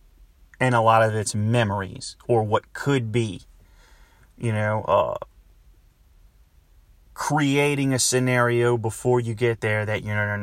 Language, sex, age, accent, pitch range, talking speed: English, male, 30-49, American, 105-125 Hz, 125 wpm